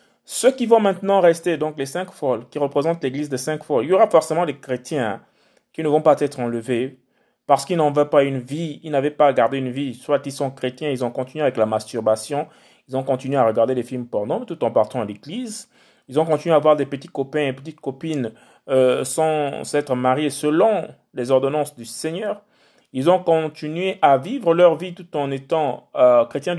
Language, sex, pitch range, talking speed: French, male, 140-180 Hz, 210 wpm